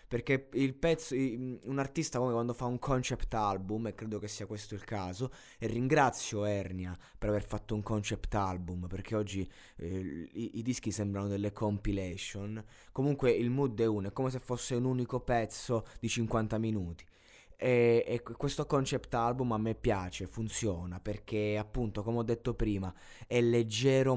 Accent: native